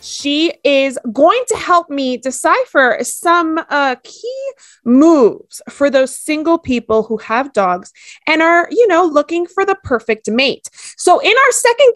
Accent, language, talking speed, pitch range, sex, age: American, English, 155 wpm, 245-340 Hz, female, 30-49